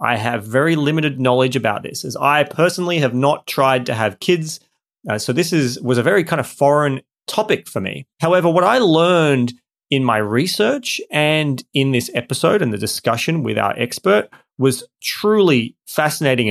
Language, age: English, 30-49